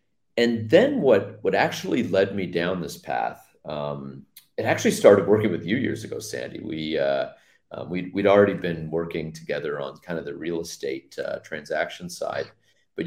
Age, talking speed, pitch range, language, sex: 40-59, 180 wpm, 75-110 Hz, English, male